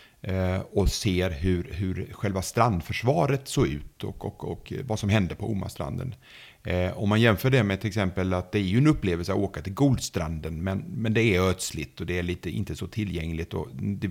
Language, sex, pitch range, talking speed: Swedish, male, 90-120 Hz, 200 wpm